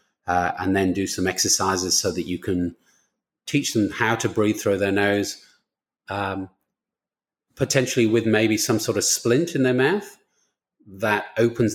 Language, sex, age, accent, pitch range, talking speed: English, male, 30-49, British, 95-105 Hz, 160 wpm